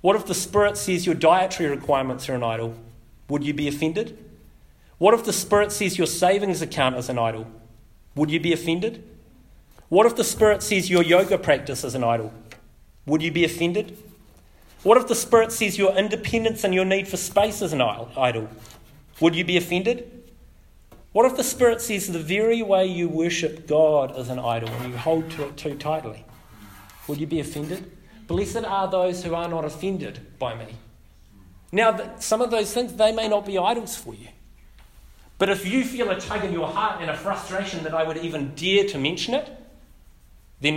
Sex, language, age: male, English, 30-49